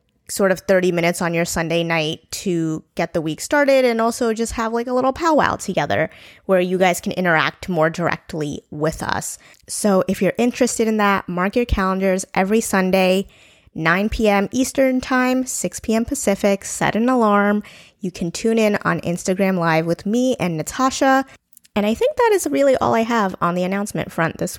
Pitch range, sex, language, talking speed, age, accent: 170-230 Hz, female, English, 190 wpm, 20-39, American